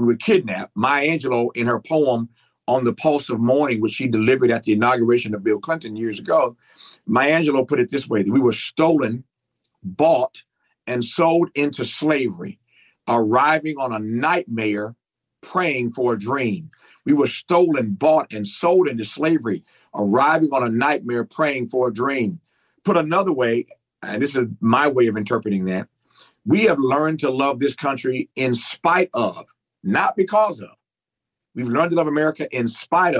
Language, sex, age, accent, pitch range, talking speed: English, male, 50-69, American, 120-165 Hz, 170 wpm